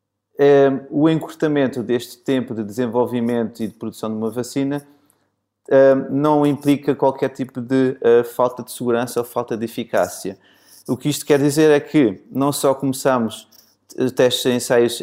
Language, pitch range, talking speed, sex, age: Portuguese, 115-135 Hz, 150 wpm, male, 20-39